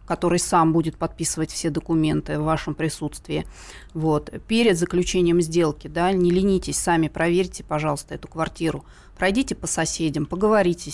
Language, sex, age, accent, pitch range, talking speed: Russian, female, 30-49, native, 155-175 Hz, 125 wpm